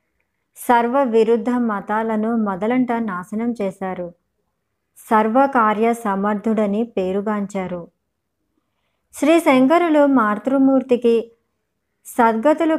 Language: Telugu